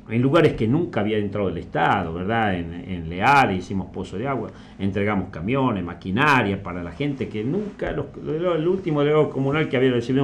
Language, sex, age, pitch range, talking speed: Spanish, male, 50-69, 105-135 Hz, 195 wpm